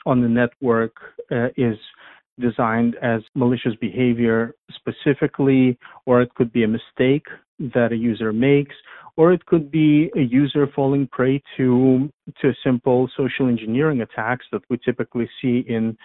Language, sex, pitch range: English, male, 115-130 Hz